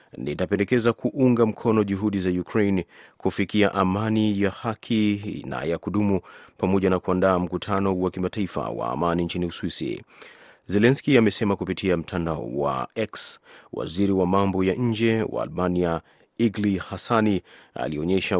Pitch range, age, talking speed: 90-105 Hz, 30-49, 125 wpm